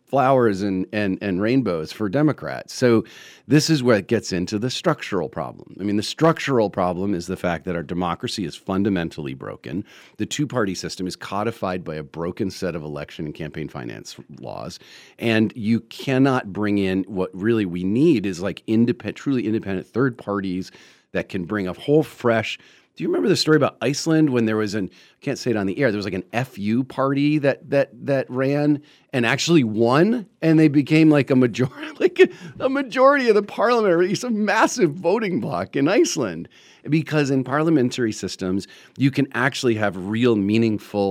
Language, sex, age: English, male, 40-59